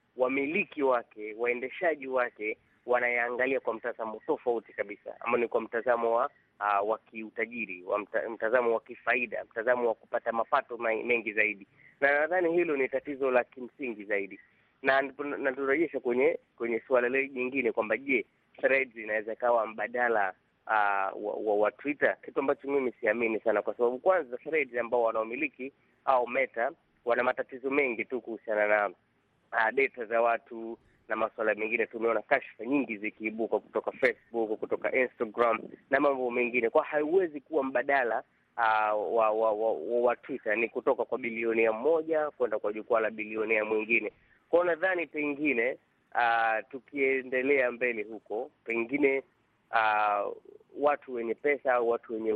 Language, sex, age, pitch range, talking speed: Swahili, male, 30-49, 110-135 Hz, 150 wpm